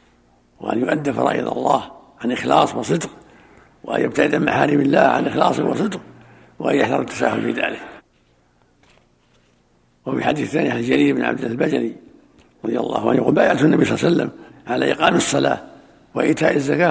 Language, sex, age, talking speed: Arabic, male, 60-79, 155 wpm